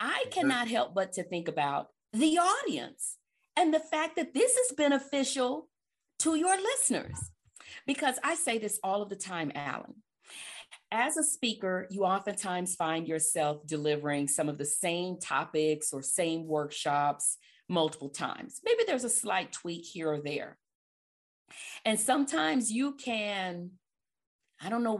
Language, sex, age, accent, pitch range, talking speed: English, female, 40-59, American, 175-255 Hz, 145 wpm